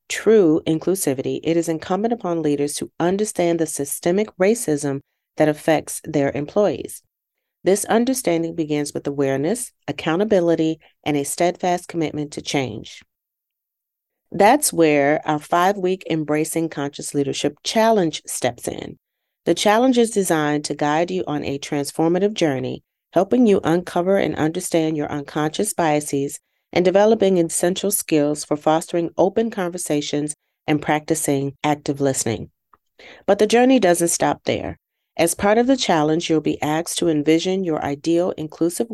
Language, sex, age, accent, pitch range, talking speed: English, female, 40-59, American, 150-185 Hz, 135 wpm